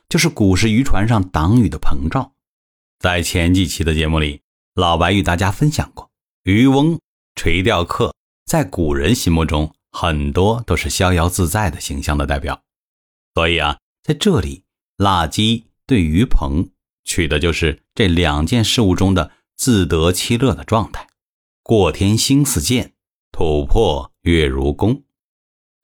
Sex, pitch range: male, 80-115 Hz